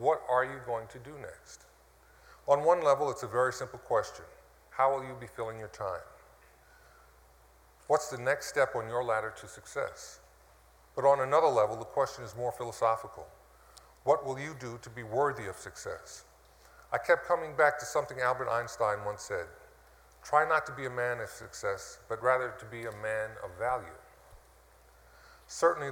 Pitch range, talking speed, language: 110-135 Hz, 175 wpm, English